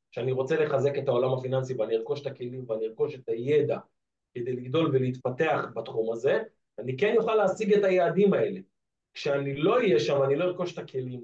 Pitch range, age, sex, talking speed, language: 130-190 Hz, 40-59, male, 185 wpm, Hebrew